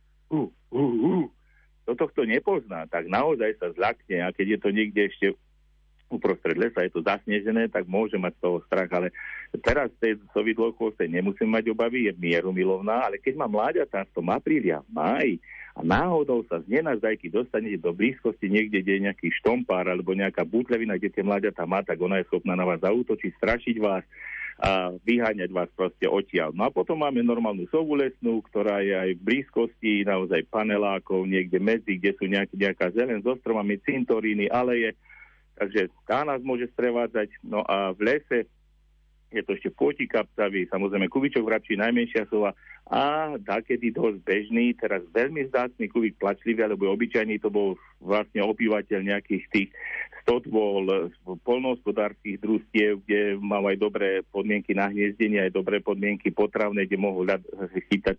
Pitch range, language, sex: 95-120 Hz, Slovak, male